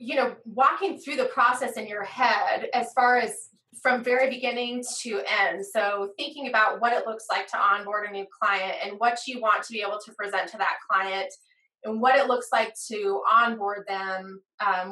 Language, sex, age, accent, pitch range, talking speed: English, female, 20-39, American, 195-235 Hz, 200 wpm